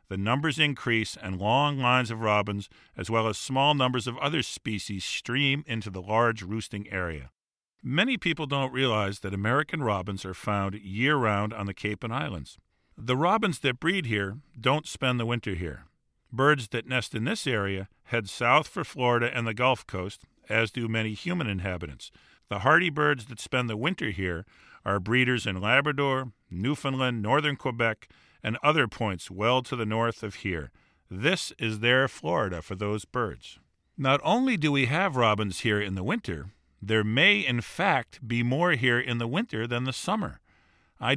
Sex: male